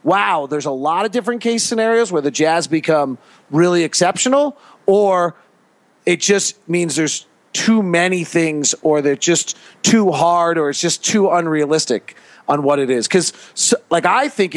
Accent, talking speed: American, 170 wpm